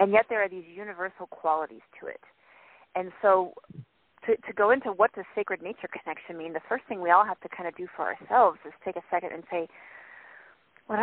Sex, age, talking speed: female, 40-59, 220 wpm